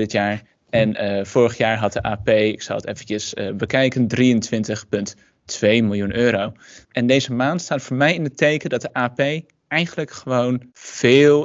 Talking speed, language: 175 wpm, Dutch